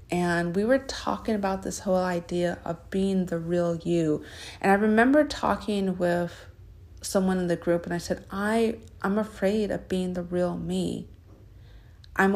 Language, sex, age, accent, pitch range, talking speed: English, female, 30-49, American, 170-195 Hz, 165 wpm